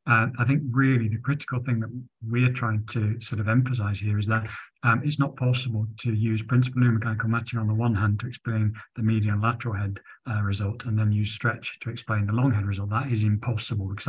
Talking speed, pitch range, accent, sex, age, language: 225 wpm, 110-125 Hz, British, male, 40-59, English